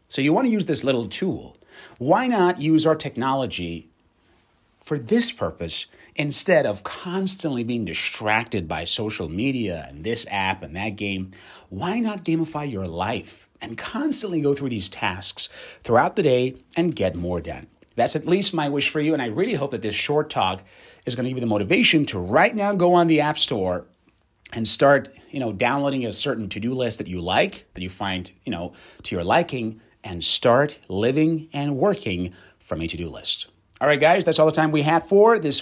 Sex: male